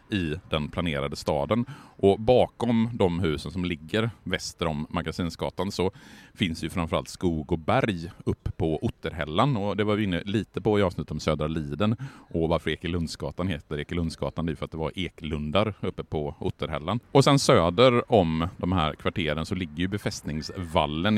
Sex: male